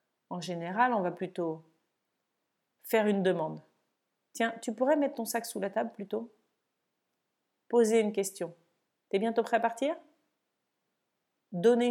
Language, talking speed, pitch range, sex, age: French, 135 wpm, 180-230 Hz, female, 40-59